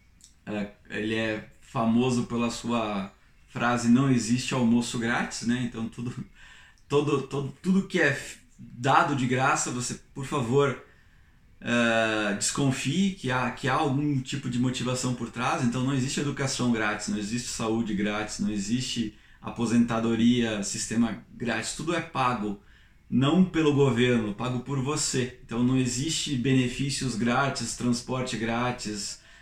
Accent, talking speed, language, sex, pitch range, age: Brazilian, 135 wpm, Portuguese, male, 120-160 Hz, 20-39